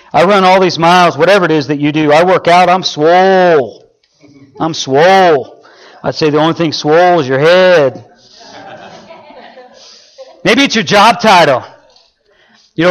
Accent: American